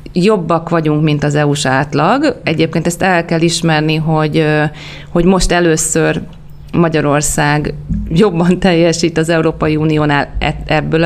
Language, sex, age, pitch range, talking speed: Hungarian, female, 30-49, 160-185 Hz, 120 wpm